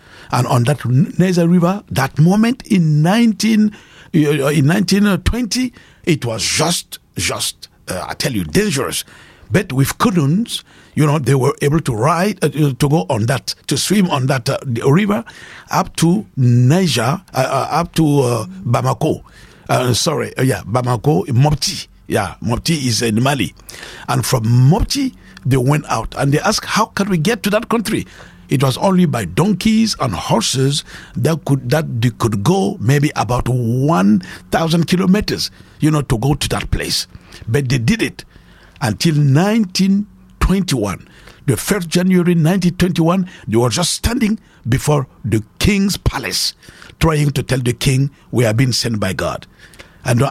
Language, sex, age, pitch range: English, male, 60-79, 125-180 Hz